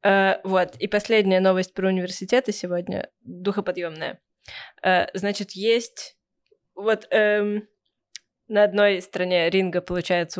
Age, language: 20-39, Russian